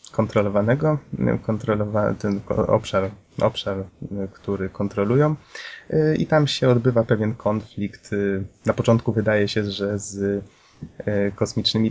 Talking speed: 95 wpm